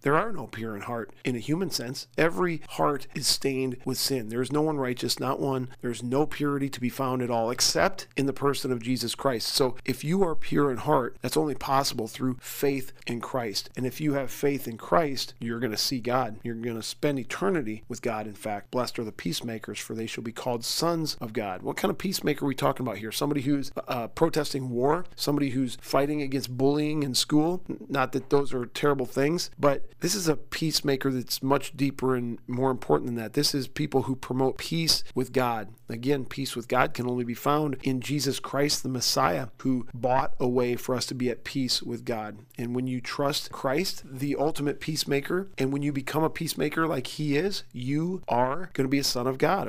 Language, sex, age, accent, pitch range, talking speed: English, male, 40-59, American, 125-145 Hz, 225 wpm